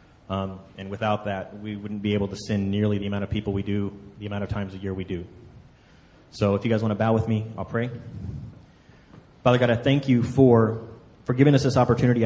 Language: English